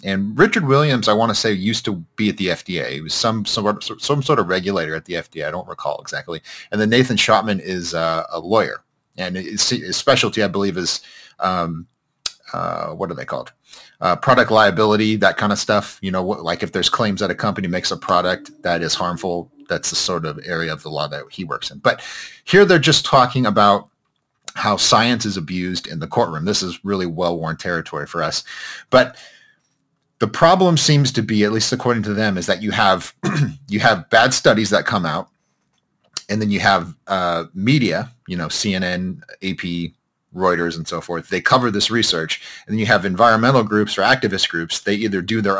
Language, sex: English, male